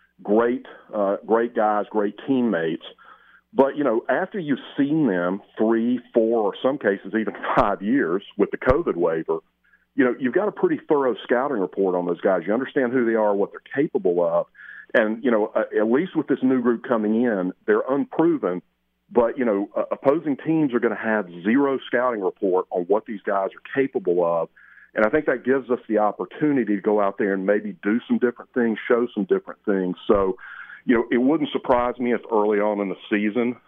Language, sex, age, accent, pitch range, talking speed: English, male, 40-59, American, 100-120 Hz, 205 wpm